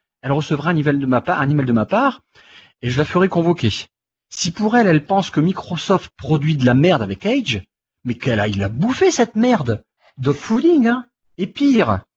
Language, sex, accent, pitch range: French, male, French, 125-200 Hz